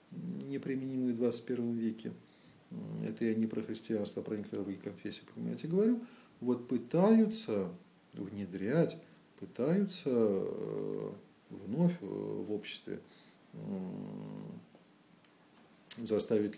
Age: 40-59